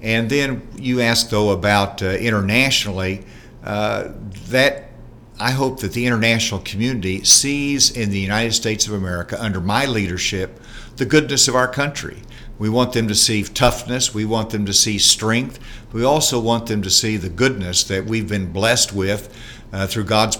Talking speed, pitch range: 175 wpm, 100-120 Hz